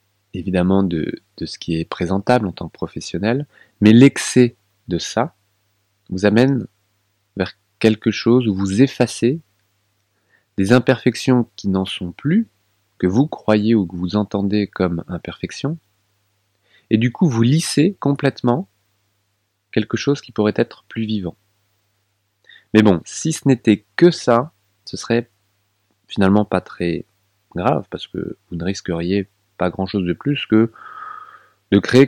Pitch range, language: 100-115 Hz, French